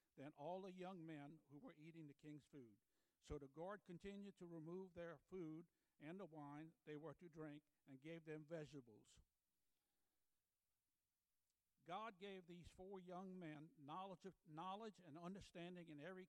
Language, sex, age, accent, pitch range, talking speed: English, male, 60-79, American, 145-180 Hz, 155 wpm